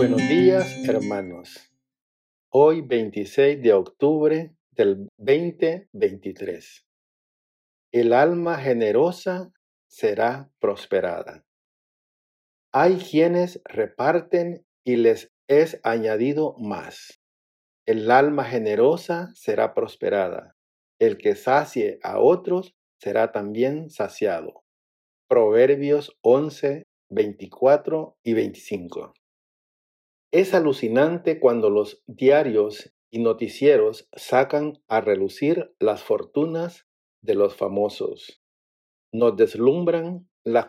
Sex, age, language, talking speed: male, 50-69, Spanish, 85 wpm